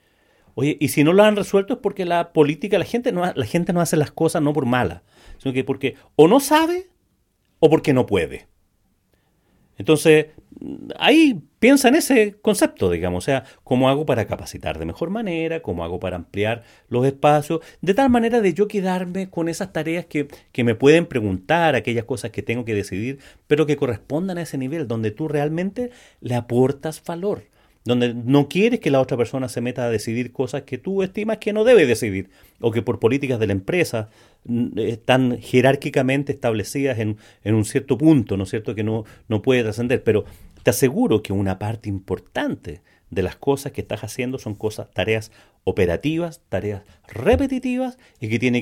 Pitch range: 110-165 Hz